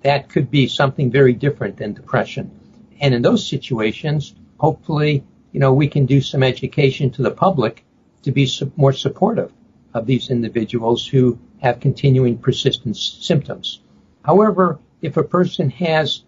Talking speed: 145 wpm